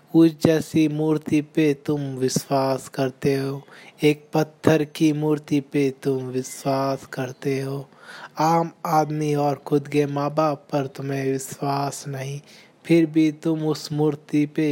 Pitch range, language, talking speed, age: 140-155 Hz, Hindi, 140 wpm, 20-39